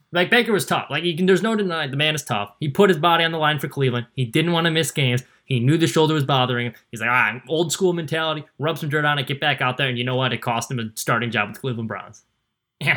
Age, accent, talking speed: 20-39, American, 295 wpm